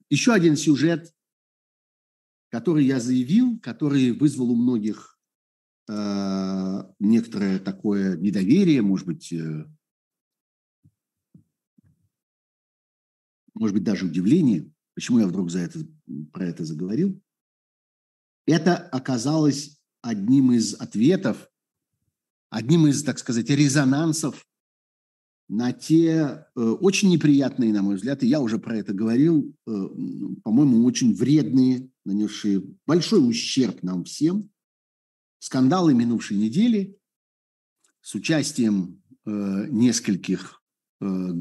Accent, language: native, Russian